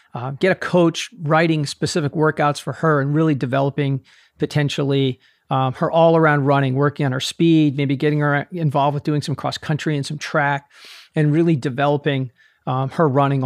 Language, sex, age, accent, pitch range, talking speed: English, male, 40-59, American, 135-155 Hz, 180 wpm